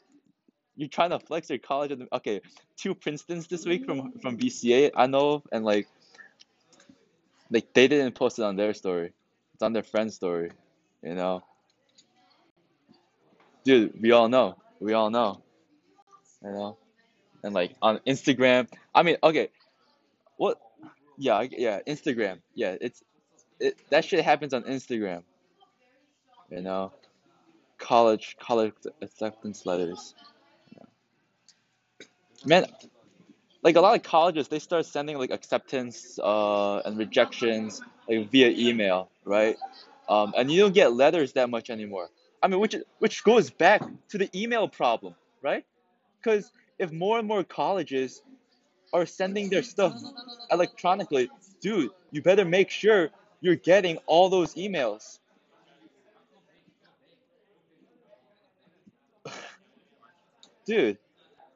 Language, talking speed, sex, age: English, 125 wpm, male, 20-39